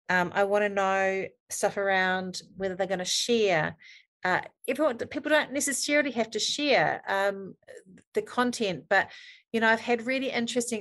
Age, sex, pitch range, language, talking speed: 40-59, female, 170-225 Hz, English, 160 wpm